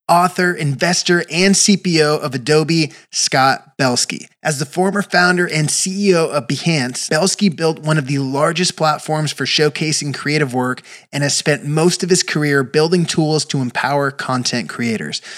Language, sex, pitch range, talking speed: English, male, 135-165 Hz, 155 wpm